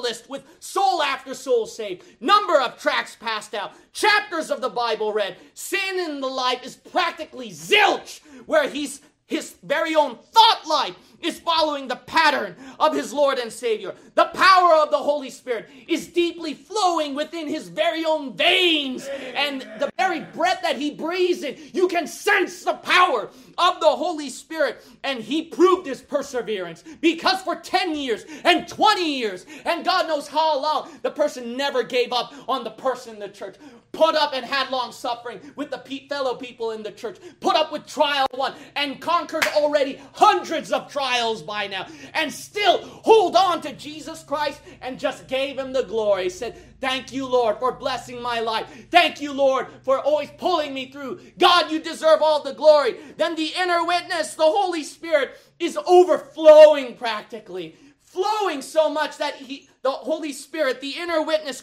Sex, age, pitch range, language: male, 30-49, 260-340 Hz, English